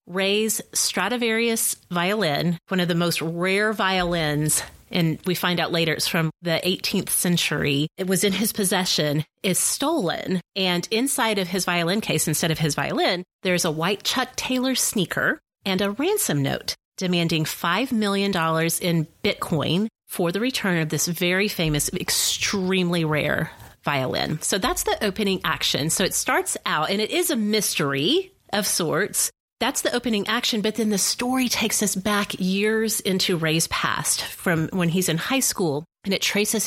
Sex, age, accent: female, 30-49, American